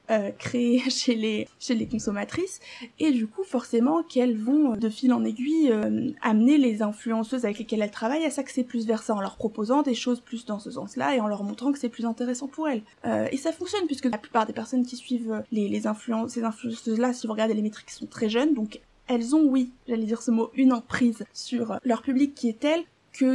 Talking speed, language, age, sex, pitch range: 230 wpm, French, 20-39, female, 225-260 Hz